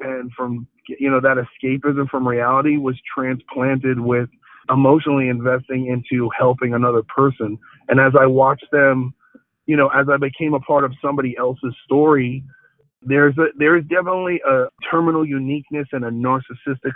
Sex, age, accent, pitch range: male, 40-59, American, 125-145 Hz